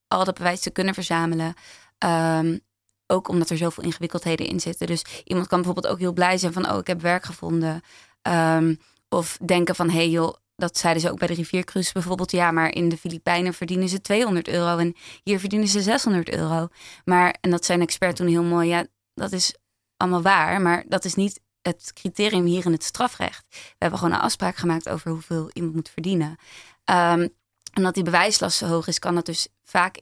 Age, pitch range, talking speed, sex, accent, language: 20-39, 165-180 Hz, 210 wpm, female, Dutch, Dutch